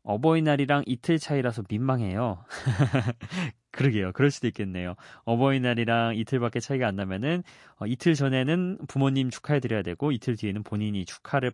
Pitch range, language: 100-140 Hz, Korean